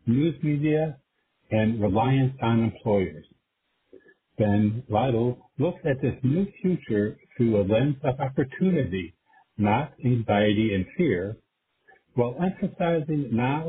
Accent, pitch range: American, 105-150 Hz